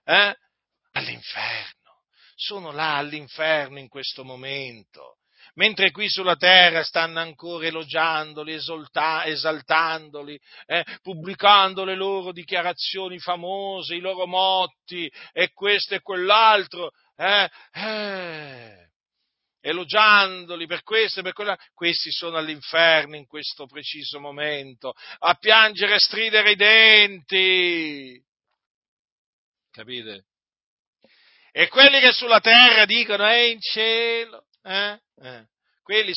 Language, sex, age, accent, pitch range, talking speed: Italian, male, 50-69, native, 150-190 Hz, 105 wpm